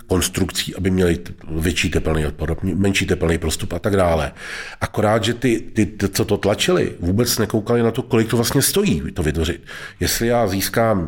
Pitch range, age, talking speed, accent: 90-110 Hz, 40-59, 170 wpm, native